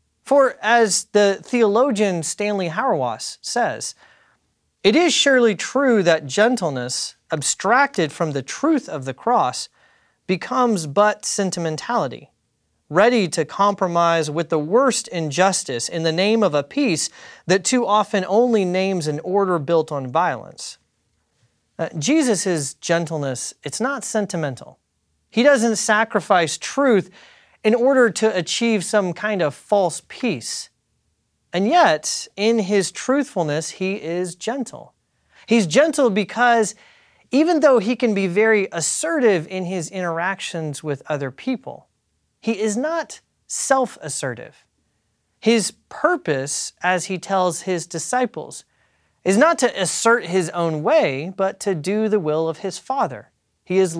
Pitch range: 170-235 Hz